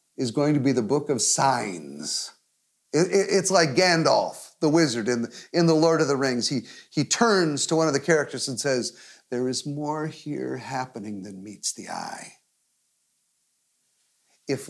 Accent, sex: American, male